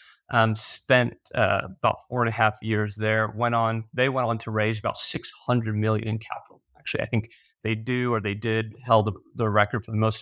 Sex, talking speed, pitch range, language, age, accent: male, 215 wpm, 110-125 Hz, English, 30-49, American